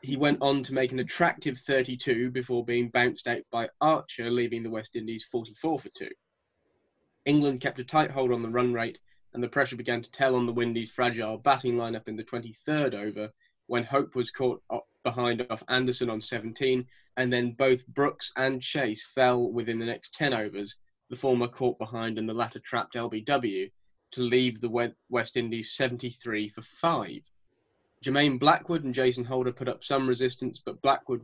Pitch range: 115-135 Hz